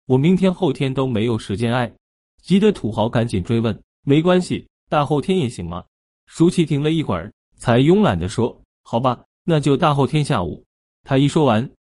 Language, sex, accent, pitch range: Chinese, male, native, 110-165 Hz